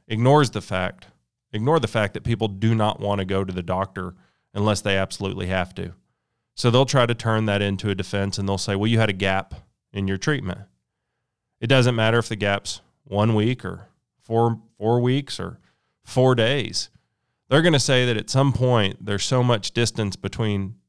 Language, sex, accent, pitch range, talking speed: English, male, American, 100-120 Hz, 200 wpm